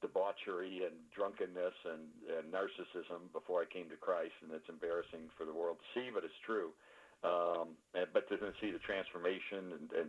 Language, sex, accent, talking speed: English, male, American, 180 wpm